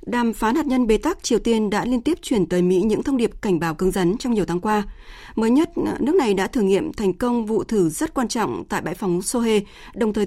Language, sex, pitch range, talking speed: Vietnamese, female, 185-240 Hz, 265 wpm